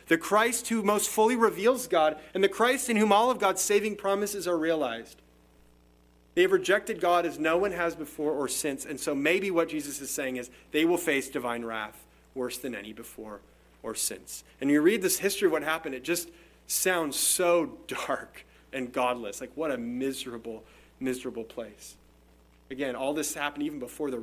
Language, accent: English, American